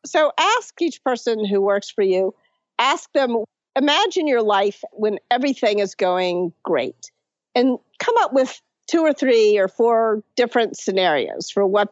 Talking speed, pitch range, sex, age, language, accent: 155 wpm, 200-255 Hz, female, 50-69, English, American